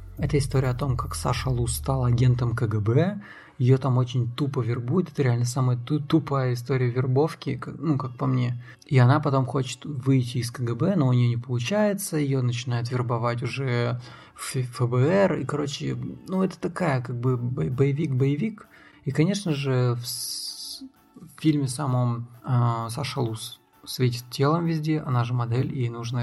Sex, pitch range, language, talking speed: male, 125-145 Hz, Russian, 160 wpm